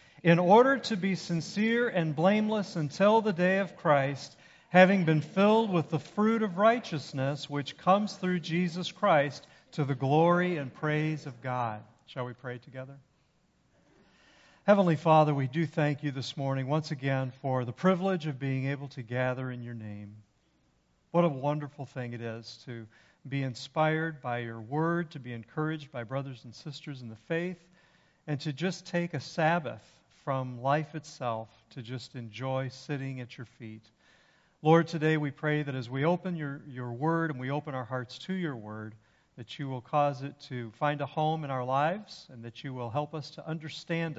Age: 50-69